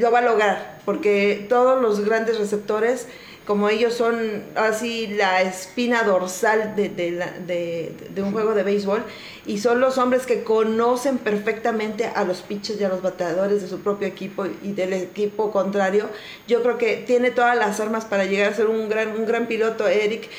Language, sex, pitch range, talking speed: Spanish, female, 210-255 Hz, 185 wpm